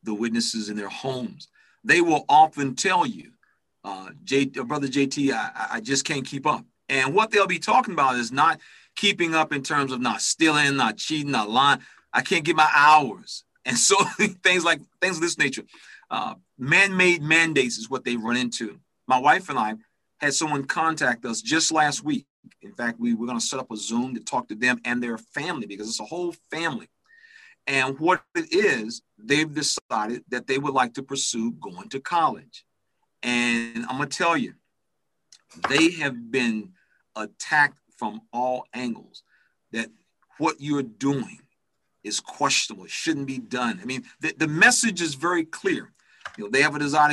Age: 40-59